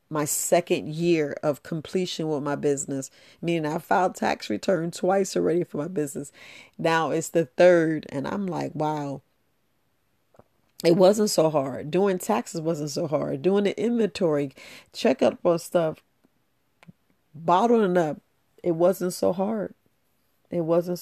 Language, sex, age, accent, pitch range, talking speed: English, female, 40-59, American, 150-180 Hz, 145 wpm